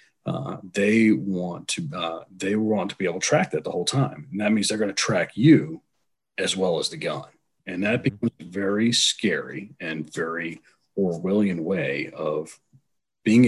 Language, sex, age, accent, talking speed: English, male, 40-59, American, 185 wpm